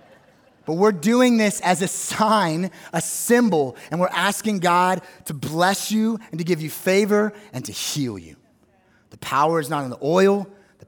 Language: English